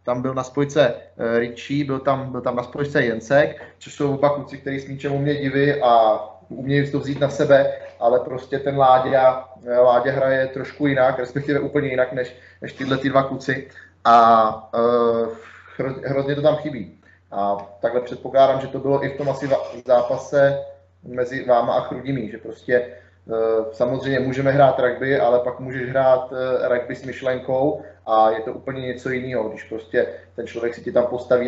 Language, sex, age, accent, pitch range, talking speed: Czech, male, 20-39, native, 115-130 Hz, 175 wpm